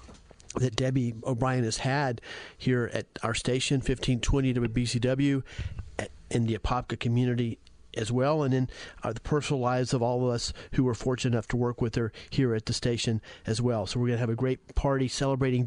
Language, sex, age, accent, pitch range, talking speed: English, male, 40-59, American, 120-135 Hz, 195 wpm